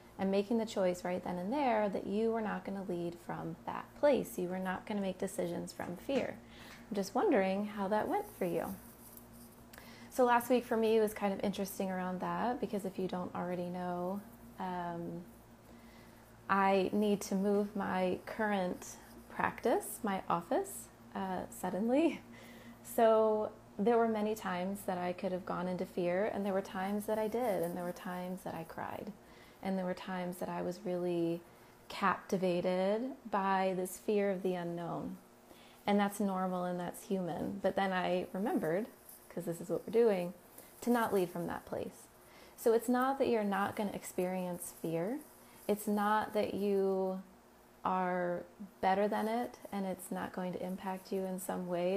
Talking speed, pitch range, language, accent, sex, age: 180 wpm, 180-210 Hz, English, American, female, 30-49